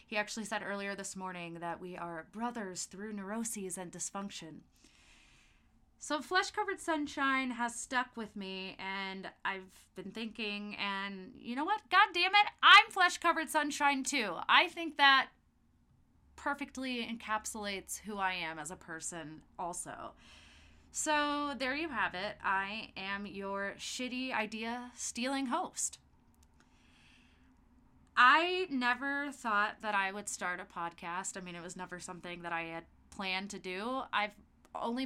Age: 20-39